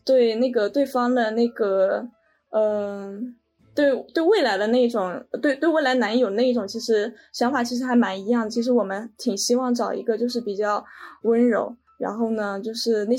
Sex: female